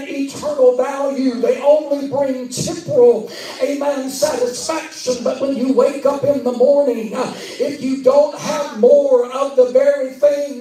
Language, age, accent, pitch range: English, 50-69, American, 260-300 Hz